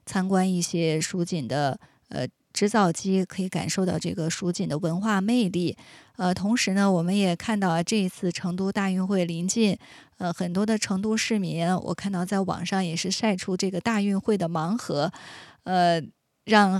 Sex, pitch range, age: female, 180-220 Hz, 20-39